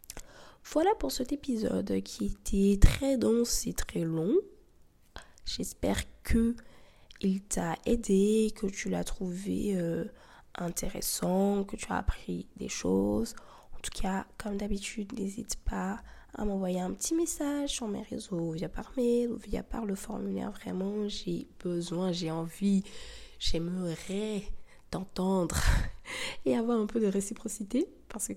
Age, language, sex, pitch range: 20-39, French, female, 180-250 Hz